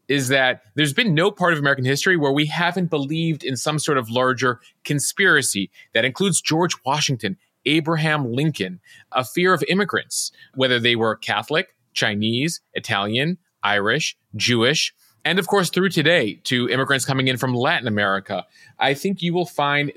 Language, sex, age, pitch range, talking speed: English, male, 30-49, 120-150 Hz, 160 wpm